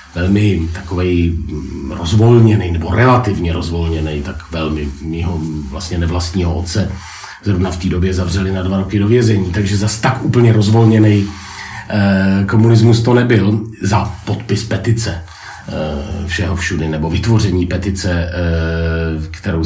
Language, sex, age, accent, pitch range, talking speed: Czech, male, 40-59, native, 90-110 Hz, 120 wpm